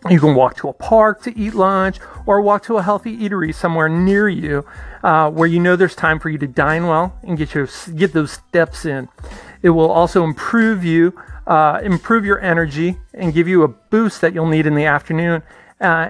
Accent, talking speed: American, 215 wpm